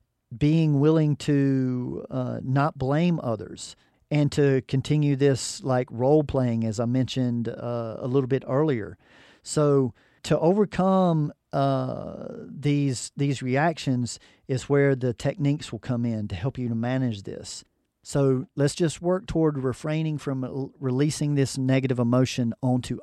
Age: 50-69